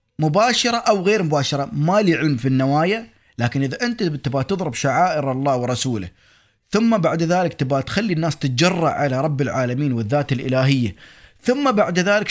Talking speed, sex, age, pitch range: 150 wpm, male, 30-49, 115-170 Hz